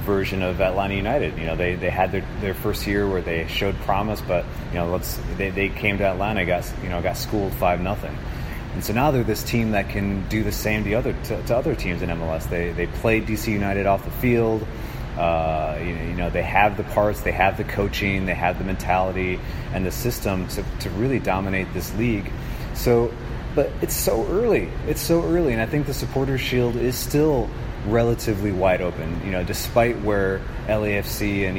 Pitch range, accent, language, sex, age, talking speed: 90-115 Hz, American, English, male, 30-49, 210 wpm